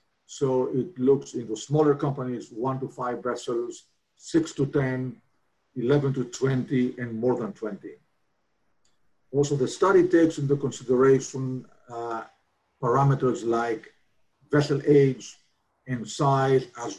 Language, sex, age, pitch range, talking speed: English, male, 50-69, 125-150 Hz, 120 wpm